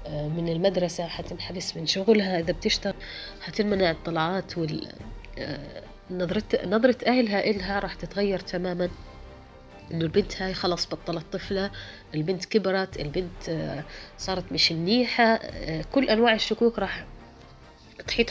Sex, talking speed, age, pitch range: female, 110 wpm, 30-49, 170-220 Hz